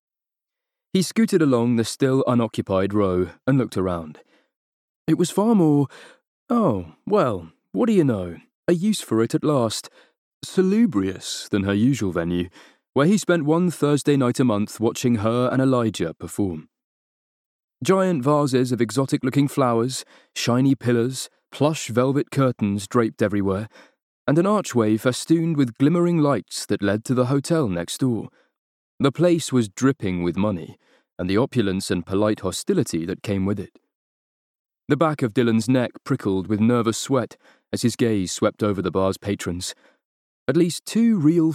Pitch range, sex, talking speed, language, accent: 100-145 Hz, male, 155 wpm, English, British